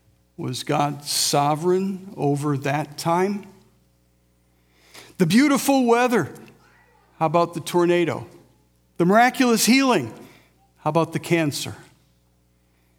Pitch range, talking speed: 115-175 Hz, 90 wpm